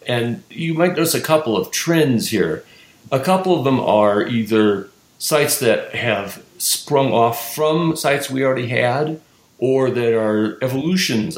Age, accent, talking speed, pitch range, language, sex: 50-69, American, 155 wpm, 105-130 Hz, English, male